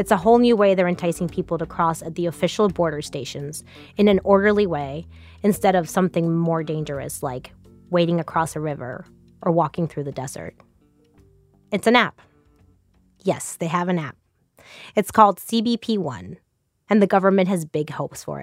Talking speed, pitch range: 170 wpm, 160-205 Hz